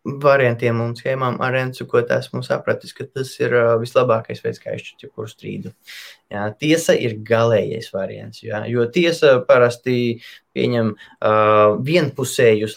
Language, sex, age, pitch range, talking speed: English, male, 20-39, 110-135 Hz, 140 wpm